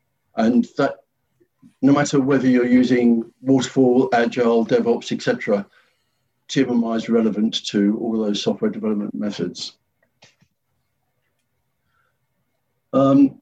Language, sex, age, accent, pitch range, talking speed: English, male, 60-79, British, 120-150 Hz, 100 wpm